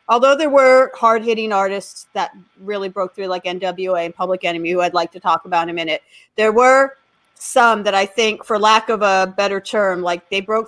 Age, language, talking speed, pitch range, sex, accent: 40-59, English, 215 wpm, 190-240 Hz, female, American